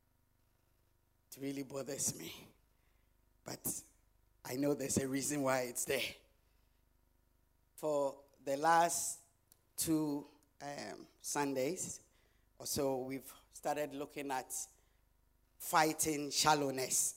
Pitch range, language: 105-160 Hz, English